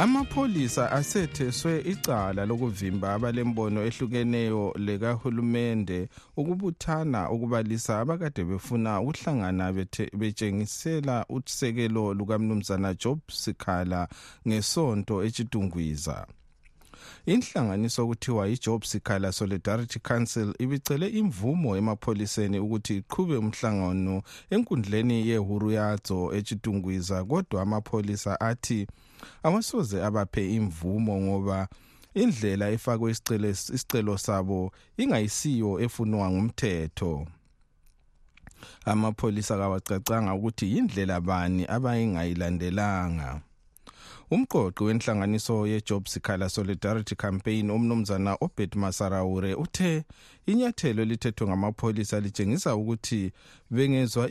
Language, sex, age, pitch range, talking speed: English, male, 50-69, 100-120 Hz, 85 wpm